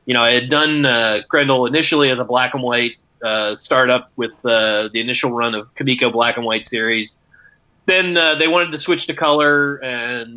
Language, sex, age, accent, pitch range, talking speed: English, male, 30-49, American, 125-150 Hz, 205 wpm